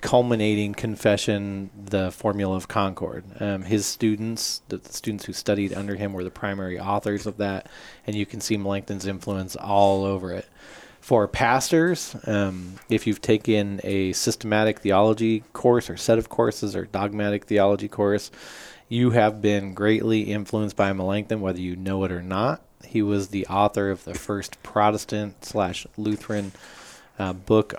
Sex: male